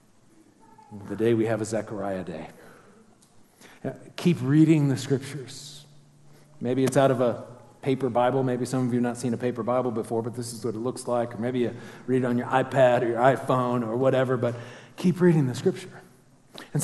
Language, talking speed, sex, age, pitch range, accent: English, 200 wpm, male, 40-59, 120-150 Hz, American